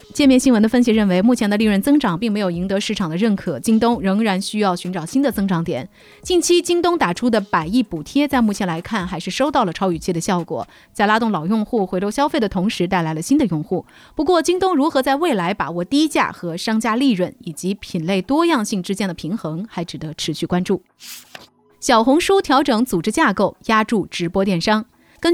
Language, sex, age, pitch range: Chinese, female, 30-49, 180-255 Hz